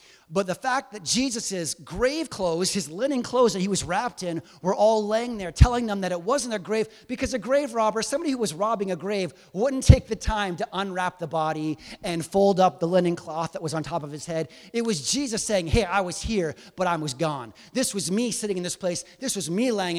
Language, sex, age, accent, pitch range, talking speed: English, male, 30-49, American, 175-240 Hz, 240 wpm